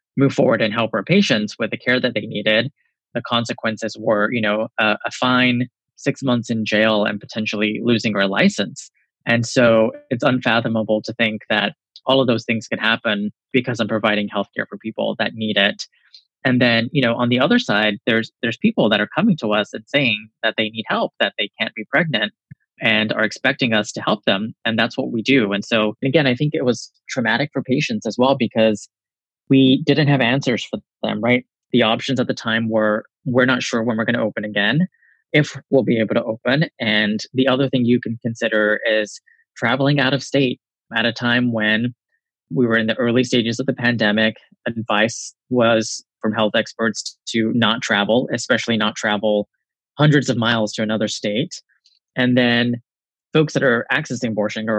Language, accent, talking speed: English, American, 200 wpm